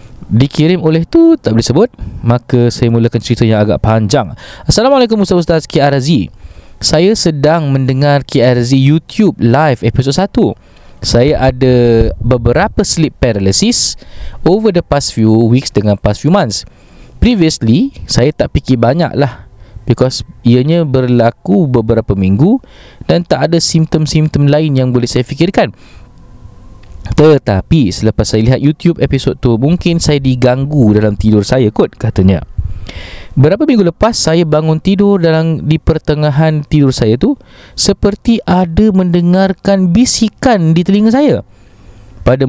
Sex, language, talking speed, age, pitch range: male, Malay, 135 wpm, 20-39, 115-175 Hz